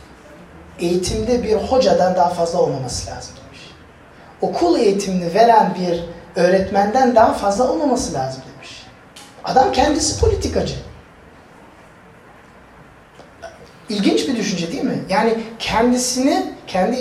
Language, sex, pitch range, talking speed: Turkish, male, 150-230 Hz, 100 wpm